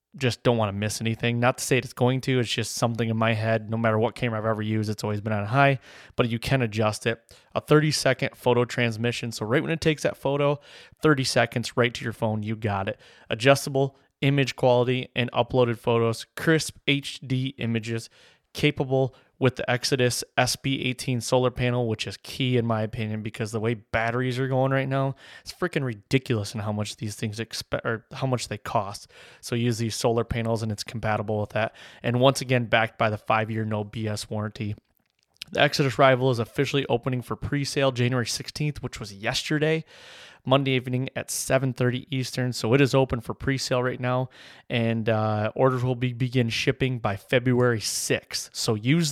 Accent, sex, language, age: American, male, English, 20-39